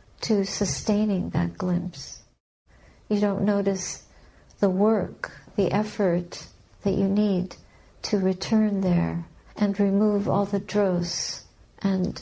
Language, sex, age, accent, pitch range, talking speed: English, female, 60-79, American, 180-210 Hz, 115 wpm